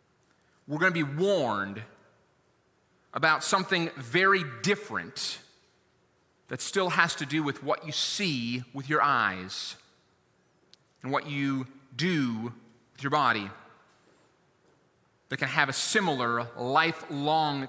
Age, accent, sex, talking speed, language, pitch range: 30-49, American, male, 115 wpm, English, 135-200 Hz